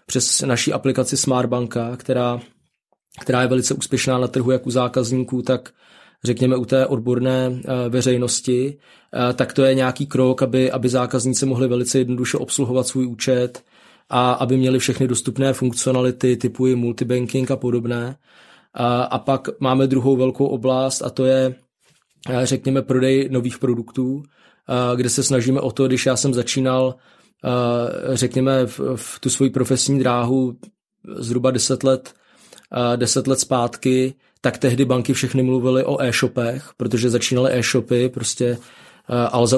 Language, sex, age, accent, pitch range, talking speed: Czech, male, 20-39, native, 125-130 Hz, 140 wpm